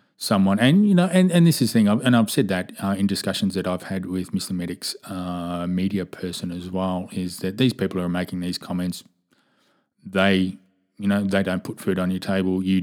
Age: 20-39